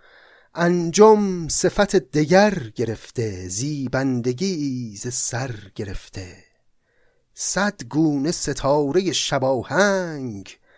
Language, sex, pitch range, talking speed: Persian, male, 115-165 Hz, 70 wpm